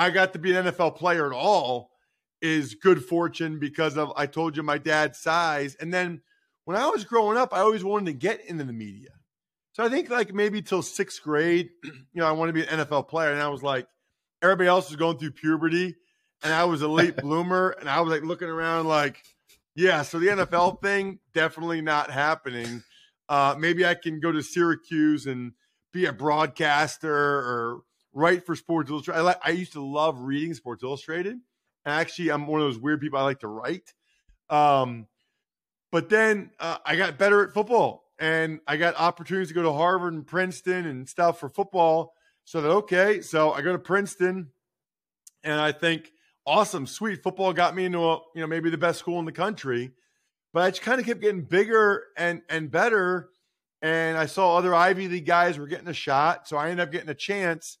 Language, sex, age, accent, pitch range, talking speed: English, male, 40-59, American, 150-185 Hz, 205 wpm